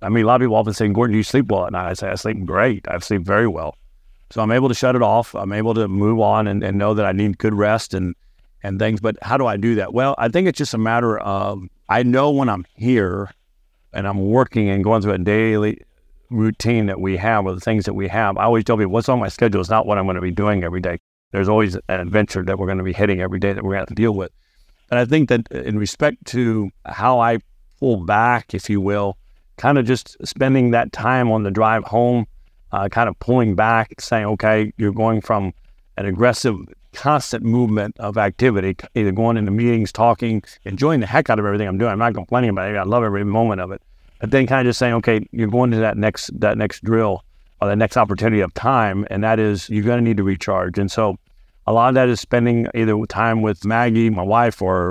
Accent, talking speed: American, 250 wpm